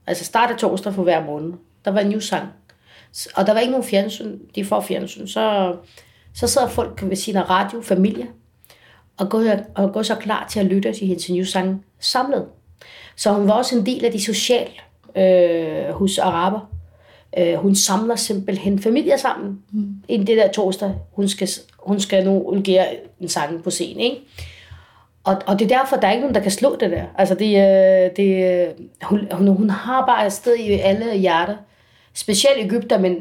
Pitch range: 185-230 Hz